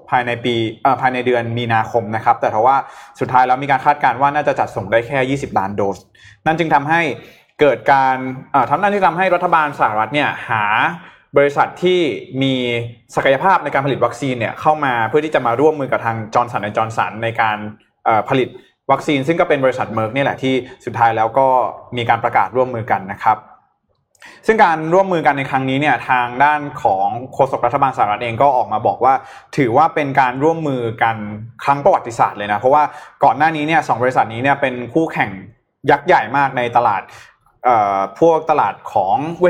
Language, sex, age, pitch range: Thai, male, 20-39, 120-150 Hz